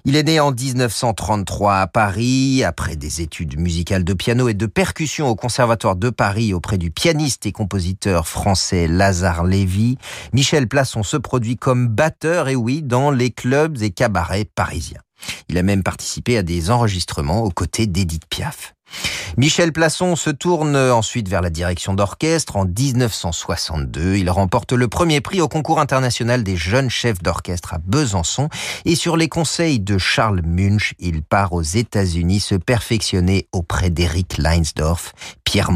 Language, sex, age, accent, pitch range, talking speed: French, male, 40-59, French, 90-130 Hz, 160 wpm